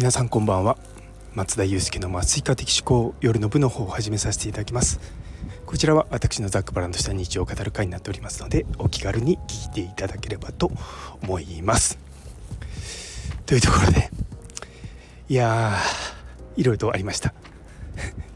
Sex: male